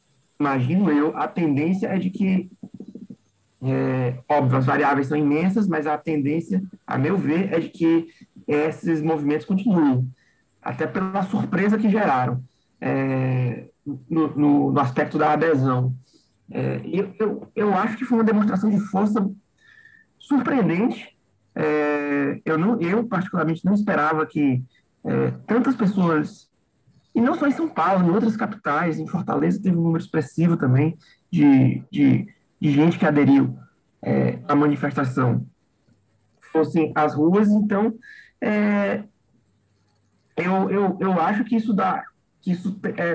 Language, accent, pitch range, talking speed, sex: Portuguese, Brazilian, 140-205 Hz, 130 wpm, male